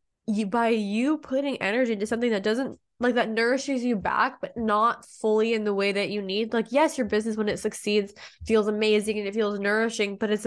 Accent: American